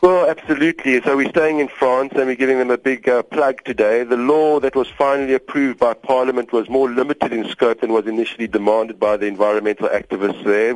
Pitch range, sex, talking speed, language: 115-135 Hz, male, 210 wpm, English